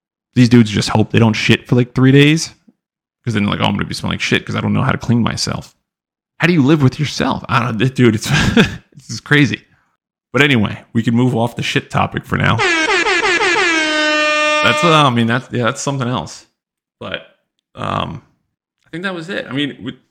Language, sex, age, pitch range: English, male, 30-49, 110-140 Hz